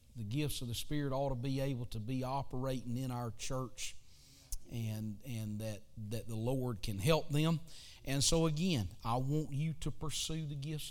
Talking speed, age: 185 wpm, 40-59